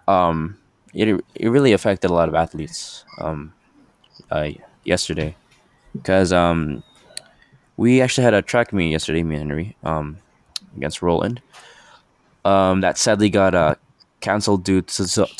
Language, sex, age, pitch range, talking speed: English, male, 20-39, 85-110 Hz, 140 wpm